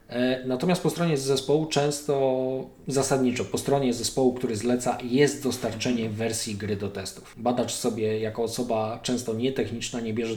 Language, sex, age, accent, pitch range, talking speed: Polish, male, 20-39, native, 110-140 Hz, 145 wpm